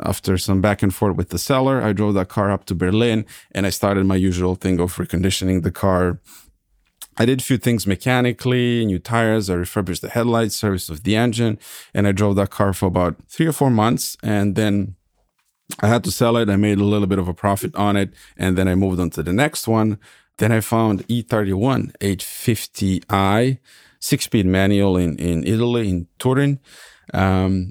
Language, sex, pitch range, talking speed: English, male, 95-115 Hz, 195 wpm